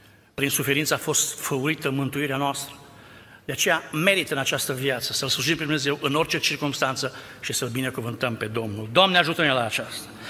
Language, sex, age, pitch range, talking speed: Romanian, male, 60-79, 130-160 Hz, 170 wpm